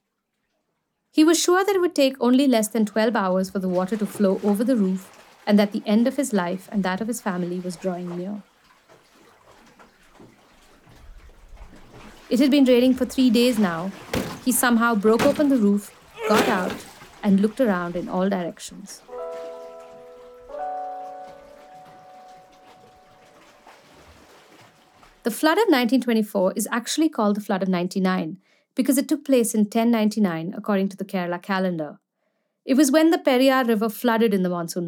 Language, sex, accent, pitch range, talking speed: English, female, Indian, 185-250 Hz, 155 wpm